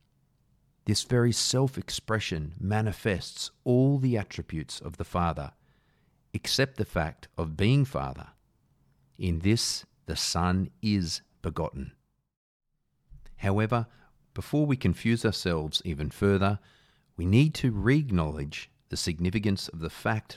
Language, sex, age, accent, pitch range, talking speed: English, male, 40-59, Australian, 85-125 Hz, 110 wpm